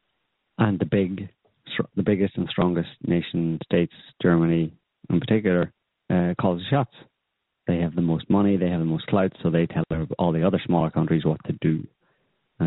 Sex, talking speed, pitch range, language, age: male, 180 wpm, 85-100 Hz, English, 30-49